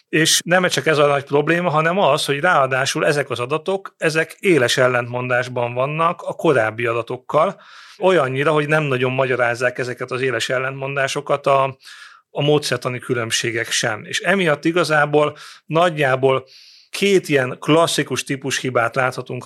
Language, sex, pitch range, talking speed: Hungarian, male, 125-155 Hz, 140 wpm